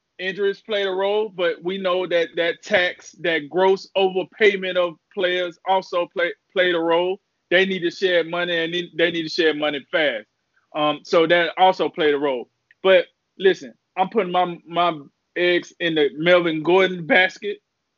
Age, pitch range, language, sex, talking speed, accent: 20-39, 150-180 Hz, English, male, 175 wpm, American